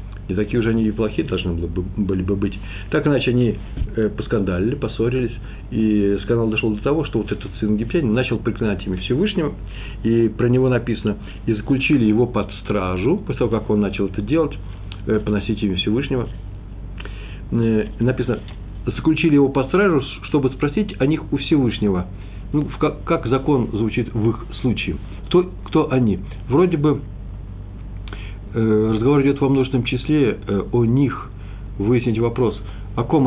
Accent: native